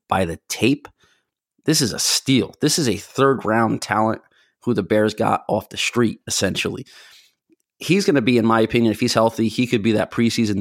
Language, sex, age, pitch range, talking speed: English, male, 30-49, 105-120 Hz, 200 wpm